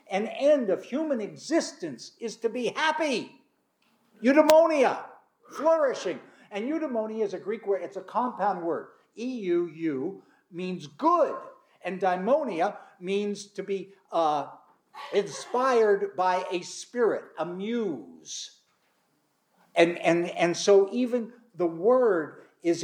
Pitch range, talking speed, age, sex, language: 175-250 Hz, 115 wpm, 60-79, male, English